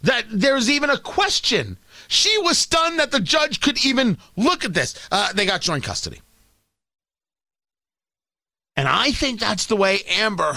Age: 40-59